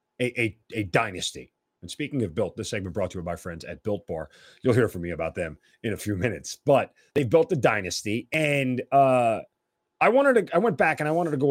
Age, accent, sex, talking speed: 30-49, American, male, 235 wpm